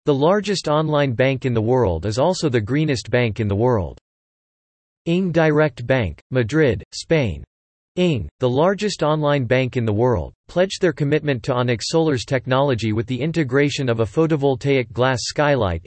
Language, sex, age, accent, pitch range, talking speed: English, male, 40-59, American, 115-150 Hz, 165 wpm